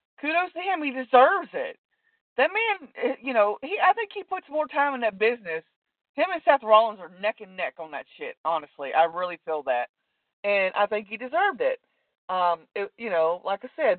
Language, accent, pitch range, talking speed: English, American, 180-255 Hz, 210 wpm